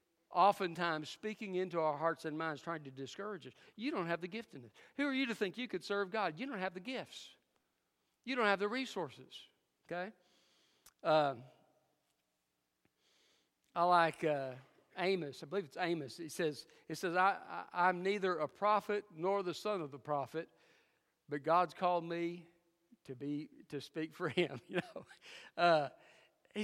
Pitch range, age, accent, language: 150-200 Hz, 50-69, American, English